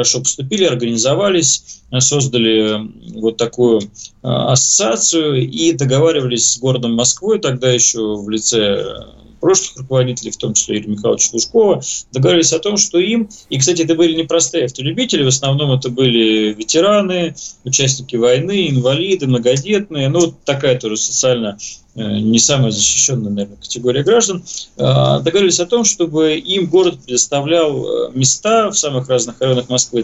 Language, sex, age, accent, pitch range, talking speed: Russian, male, 20-39, native, 120-155 Hz, 130 wpm